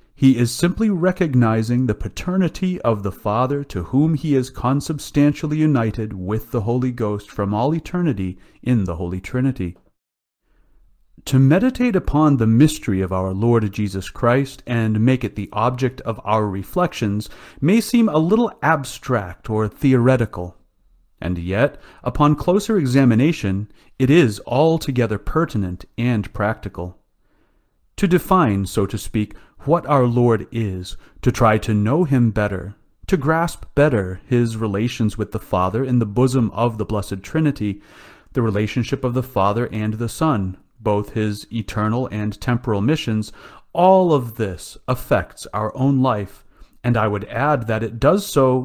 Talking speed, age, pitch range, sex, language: 150 wpm, 40-59, 105-145 Hz, male, English